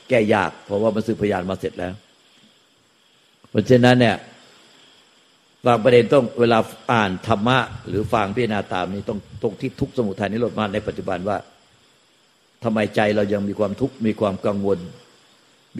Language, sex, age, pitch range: Thai, male, 60-79, 100-120 Hz